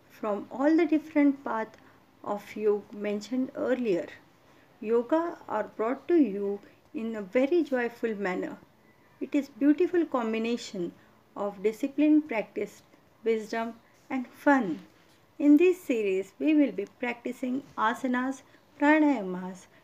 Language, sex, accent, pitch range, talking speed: English, female, Indian, 215-295 Hz, 115 wpm